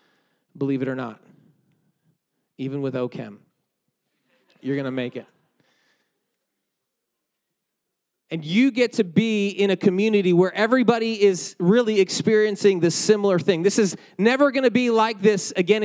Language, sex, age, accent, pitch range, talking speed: English, male, 30-49, American, 150-205 Hz, 135 wpm